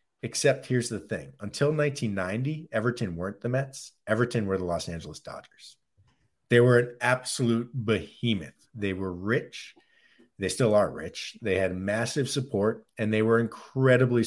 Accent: American